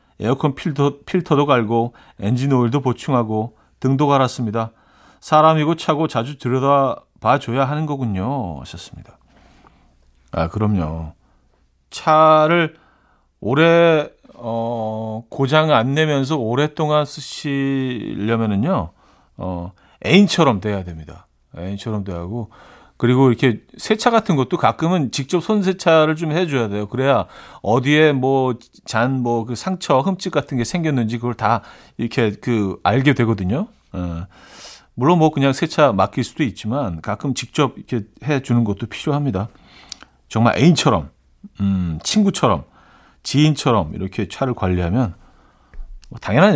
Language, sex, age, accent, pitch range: Korean, male, 40-59, native, 100-150 Hz